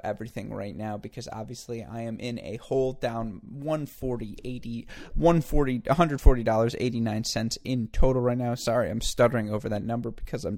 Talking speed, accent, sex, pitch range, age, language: 145 wpm, American, male, 115-145 Hz, 20-39, English